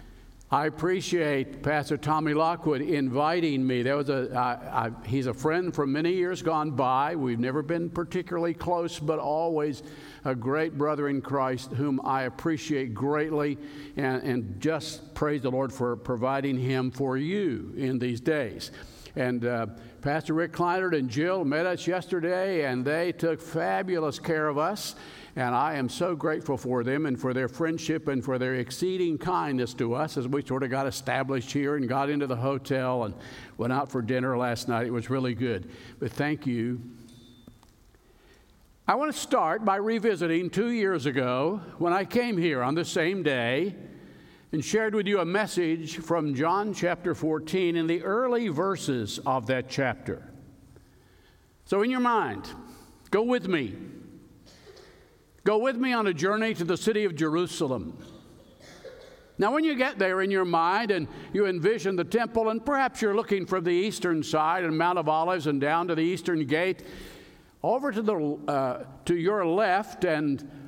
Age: 50-69